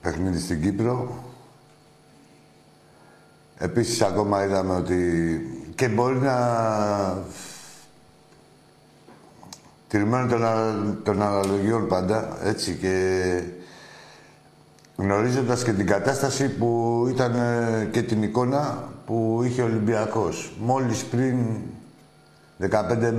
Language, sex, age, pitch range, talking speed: Greek, male, 60-79, 100-125 Hz, 85 wpm